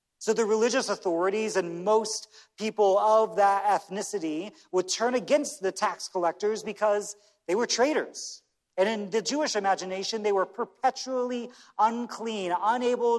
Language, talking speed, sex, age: English, 135 wpm, male, 40-59